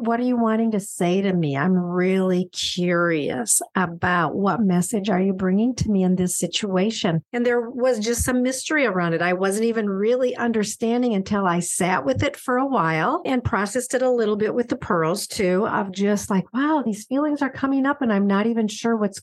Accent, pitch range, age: American, 185-235 Hz, 50-69